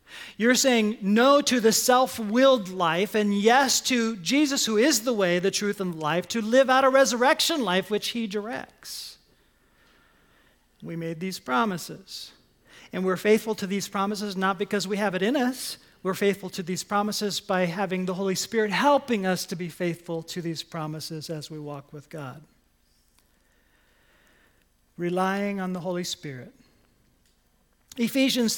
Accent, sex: American, male